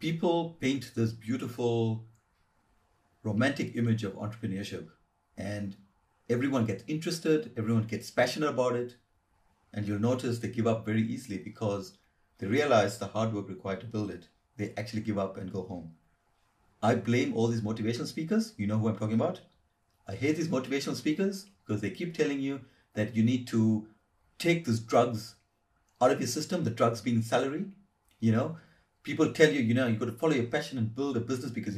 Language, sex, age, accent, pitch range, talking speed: English, male, 50-69, Indian, 100-125 Hz, 185 wpm